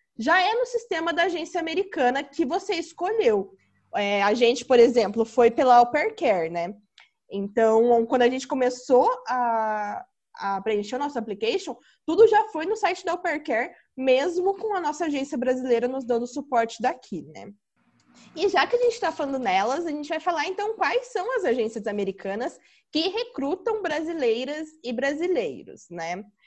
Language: Portuguese